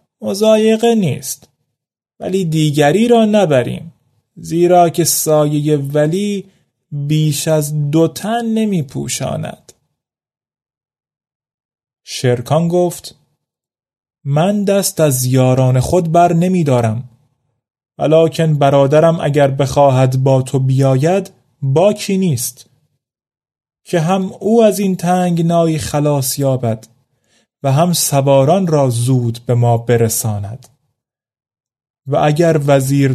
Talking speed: 100 wpm